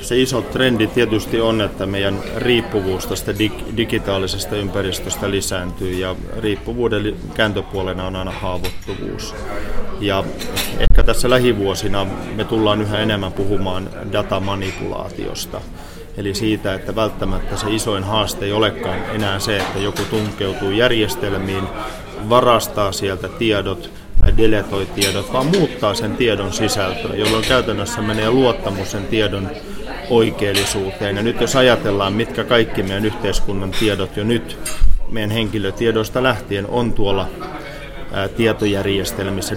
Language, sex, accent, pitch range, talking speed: Finnish, male, native, 95-110 Hz, 120 wpm